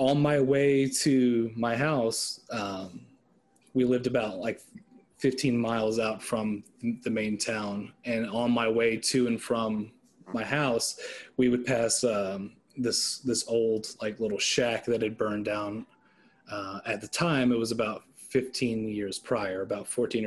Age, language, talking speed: 30-49, English, 155 wpm